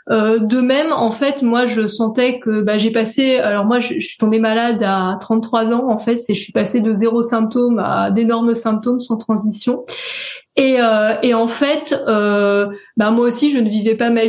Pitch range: 220-250 Hz